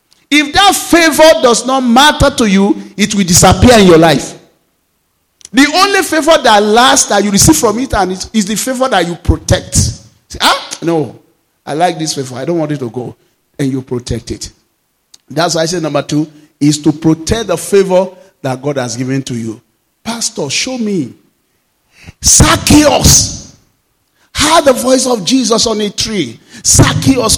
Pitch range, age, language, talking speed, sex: 160-240 Hz, 50-69, English, 170 wpm, male